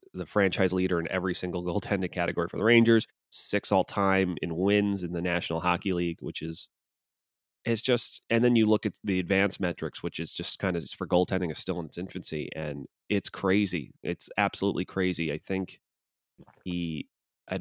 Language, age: English, 30-49